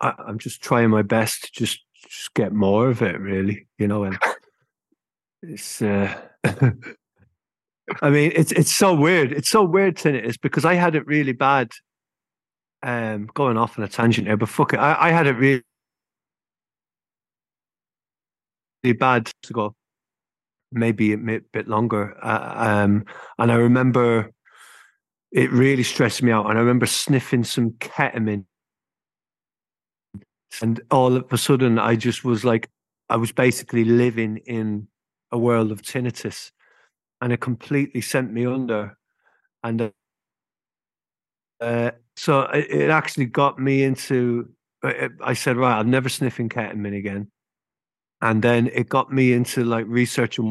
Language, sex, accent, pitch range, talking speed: English, male, British, 110-130 Hz, 145 wpm